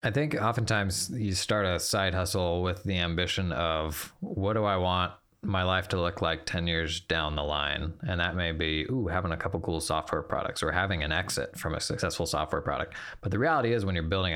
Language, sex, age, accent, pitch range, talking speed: English, male, 20-39, American, 95-135 Hz, 225 wpm